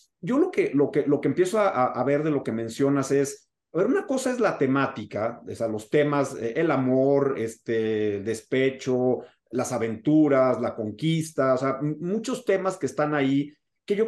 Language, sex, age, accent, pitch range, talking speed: Spanish, male, 40-59, Mexican, 130-160 Hz, 190 wpm